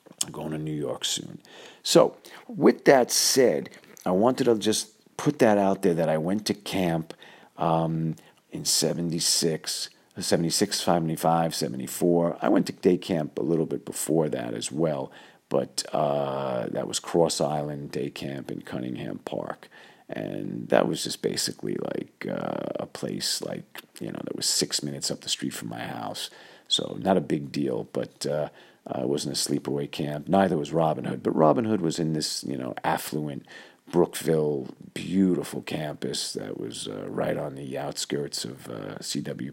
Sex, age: male, 50-69